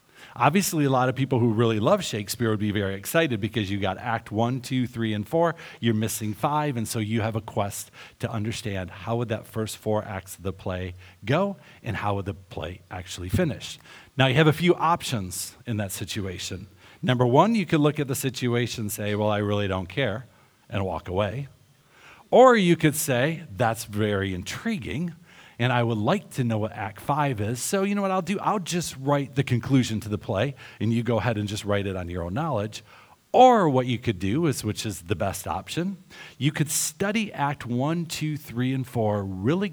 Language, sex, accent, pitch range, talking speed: English, male, American, 105-145 Hz, 215 wpm